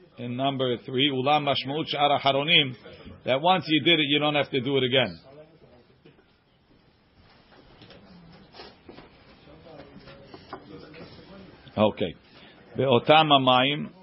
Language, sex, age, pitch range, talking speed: English, male, 50-69, 130-155 Hz, 80 wpm